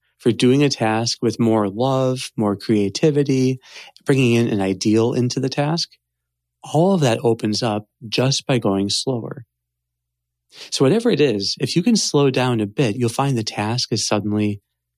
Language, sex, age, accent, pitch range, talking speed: English, male, 30-49, American, 95-120 Hz, 170 wpm